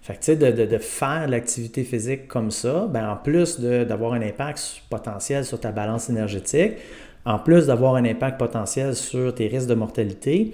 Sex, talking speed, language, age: male, 195 wpm, French, 30-49